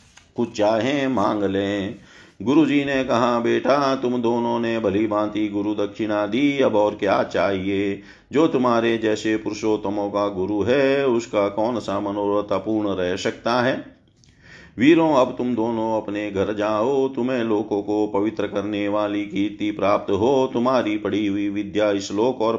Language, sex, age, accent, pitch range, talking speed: Hindi, male, 50-69, native, 100-110 Hz, 155 wpm